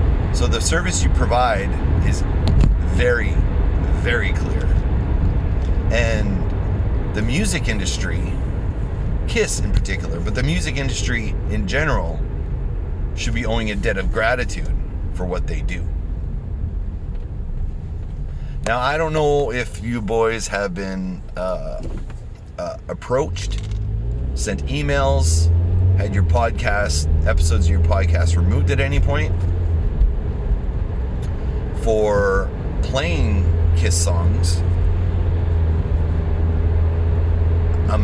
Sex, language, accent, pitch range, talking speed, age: male, English, American, 80-95 Hz, 100 wpm, 30-49